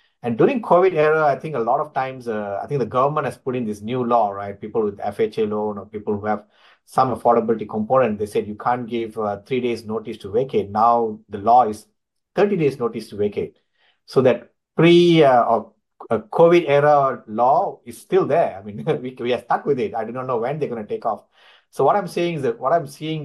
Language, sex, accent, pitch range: English, male, Indian, 115-150 Hz